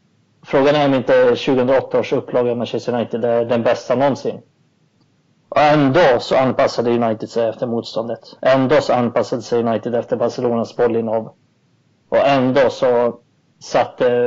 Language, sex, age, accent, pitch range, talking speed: Swedish, male, 30-49, native, 115-130 Hz, 135 wpm